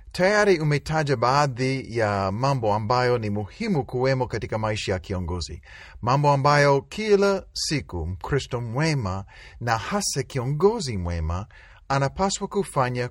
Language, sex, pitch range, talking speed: Swahili, male, 105-155 Hz, 115 wpm